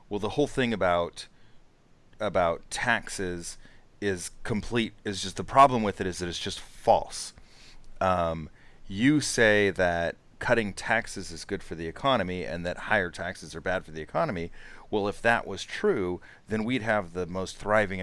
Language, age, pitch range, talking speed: English, 30-49, 90-115 Hz, 170 wpm